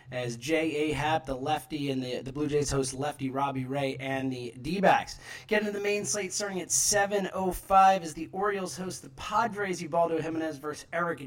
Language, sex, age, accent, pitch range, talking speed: English, male, 30-49, American, 135-185 Hz, 185 wpm